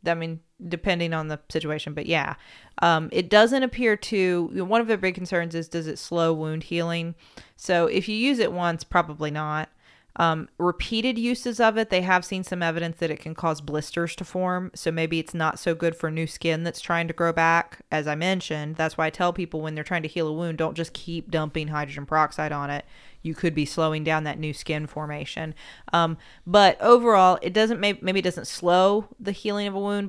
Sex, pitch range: female, 160-190 Hz